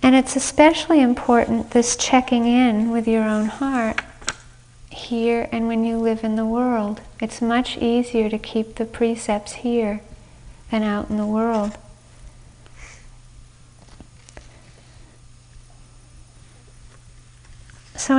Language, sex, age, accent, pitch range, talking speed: English, female, 40-59, American, 200-240 Hz, 110 wpm